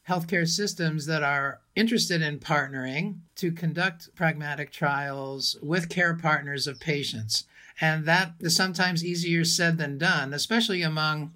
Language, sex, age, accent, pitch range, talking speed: English, male, 50-69, American, 145-175 Hz, 135 wpm